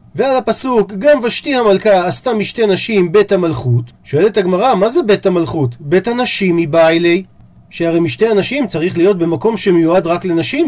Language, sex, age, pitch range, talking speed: Hebrew, male, 40-59, 170-250 Hz, 170 wpm